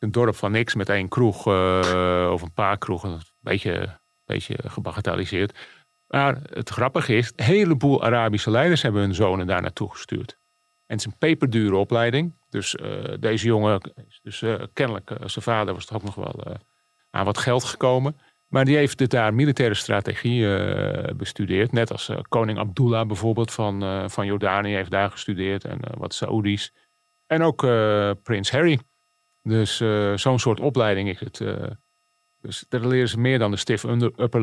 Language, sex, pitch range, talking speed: Dutch, male, 105-130 Hz, 180 wpm